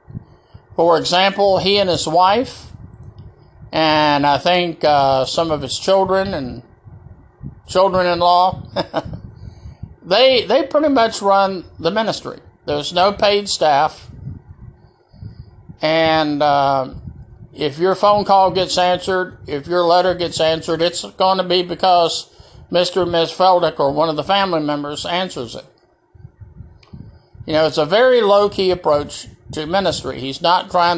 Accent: American